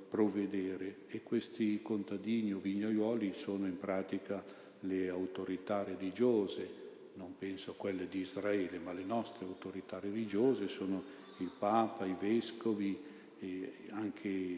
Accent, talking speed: native, 120 wpm